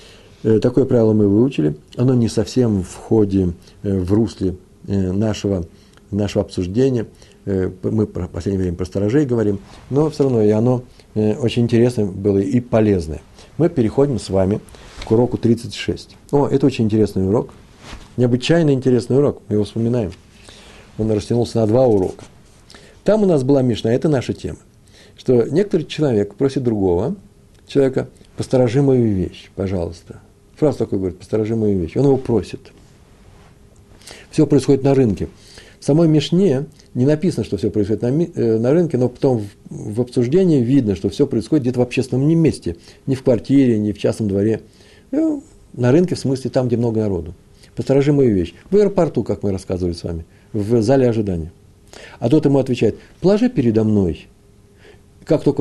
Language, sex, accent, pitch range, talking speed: Russian, male, native, 100-135 Hz, 160 wpm